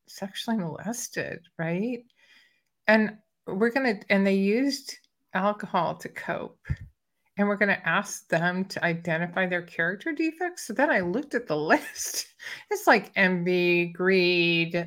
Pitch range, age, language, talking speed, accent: 170-235 Hz, 50-69, English, 140 wpm, American